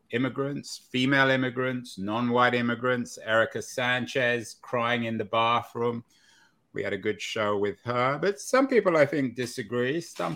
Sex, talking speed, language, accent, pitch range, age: male, 145 wpm, English, British, 115-135 Hz, 30-49